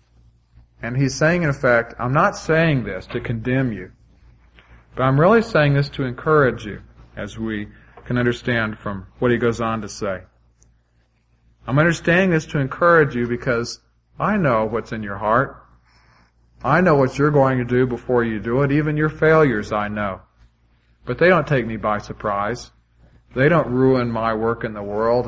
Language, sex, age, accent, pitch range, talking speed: English, male, 40-59, American, 105-140 Hz, 180 wpm